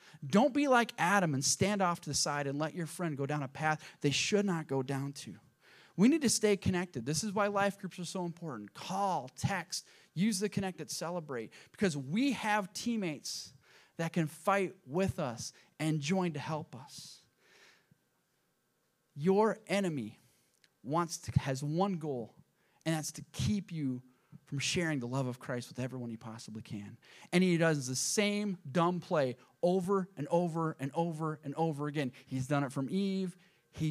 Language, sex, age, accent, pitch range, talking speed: English, male, 30-49, American, 140-200 Hz, 180 wpm